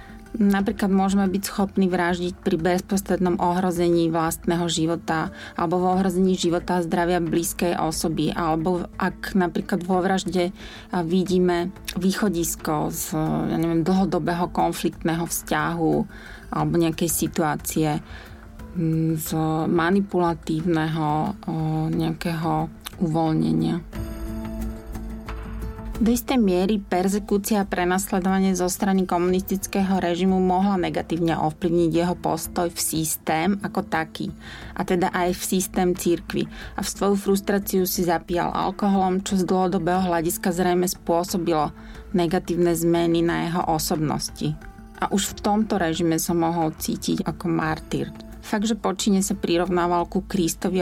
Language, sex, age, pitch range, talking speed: Slovak, female, 30-49, 165-190 Hz, 115 wpm